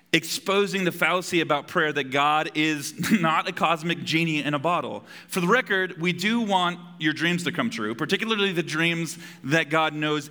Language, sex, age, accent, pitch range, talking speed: English, male, 30-49, American, 150-175 Hz, 185 wpm